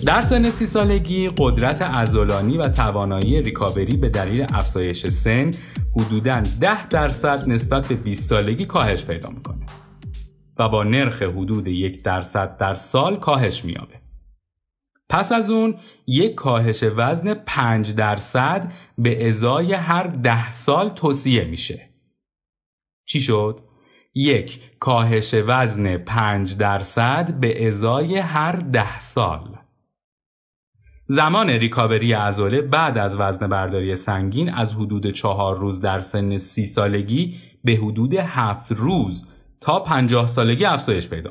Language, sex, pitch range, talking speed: Persian, male, 100-135 Hz, 125 wpm